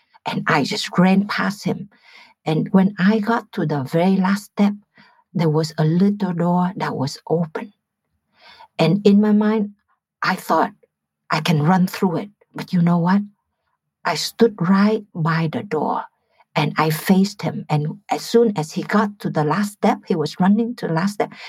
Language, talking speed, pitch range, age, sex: English, 180 wpm, 155-205 Hz, 60-79, female